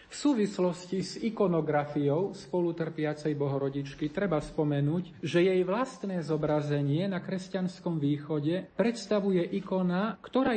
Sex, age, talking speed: male, 40-59, 110 wpm